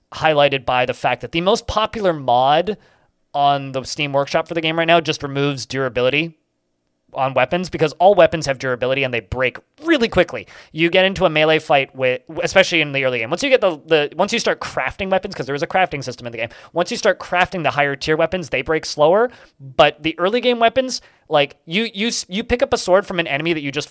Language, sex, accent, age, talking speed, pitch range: English, male, American, 20-39, 235 wpm, 125-165 Hz